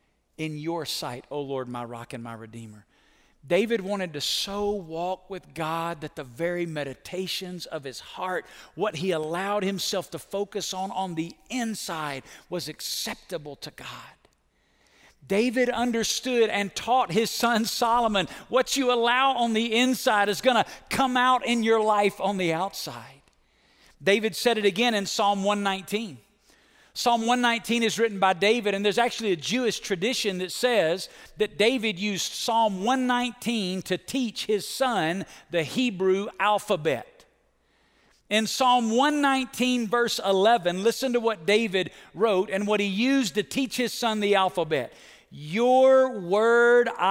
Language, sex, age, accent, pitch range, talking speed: English, male, 50-69, American, 175-230 Hz, 150 wpm